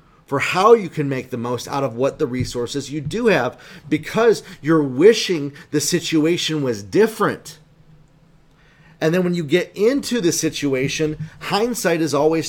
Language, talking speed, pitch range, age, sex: English, 160 wpm, 115-160 Hz, 30-49, male